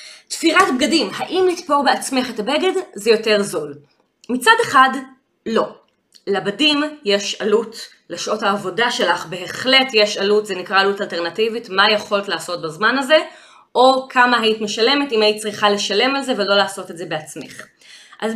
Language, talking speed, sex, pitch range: Hebrew, 155 wpm, female, 205-290 Hz